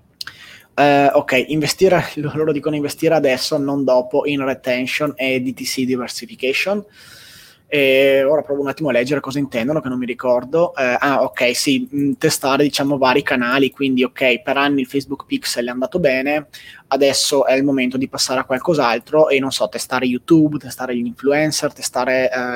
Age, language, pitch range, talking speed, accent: 20-39, Italian, 130-150 Hz, 155 wpm, native